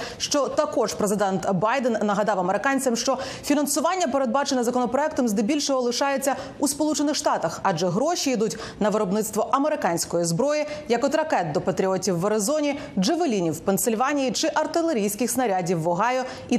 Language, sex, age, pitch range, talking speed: Ukrainian, female, 30-49, 215-295 Hz, 135 wpm